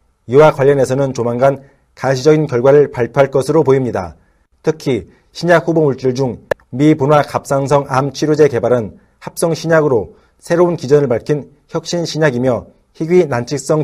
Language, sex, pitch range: Korean, male, 125-155 Hz